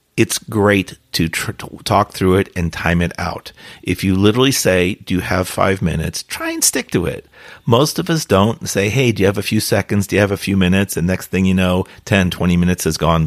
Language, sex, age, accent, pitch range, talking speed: English, male, 40-59, American, 90-115 Hz, 240 wpm